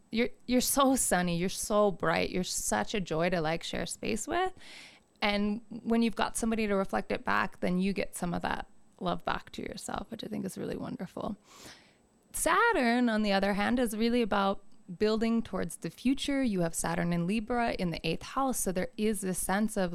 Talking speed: 205 wpm